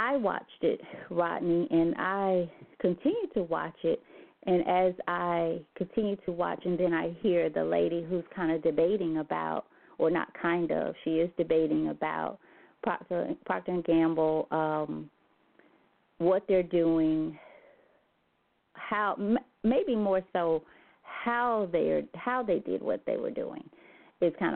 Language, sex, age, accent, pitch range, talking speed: English, female, 30-49, American, 160-210 Hz, 140 wpm